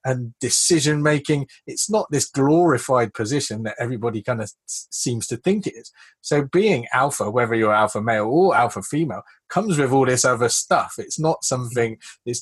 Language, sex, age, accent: English, male, 30-49, British